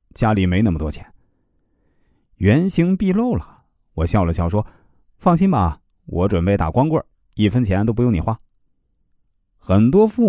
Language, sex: Chinese, male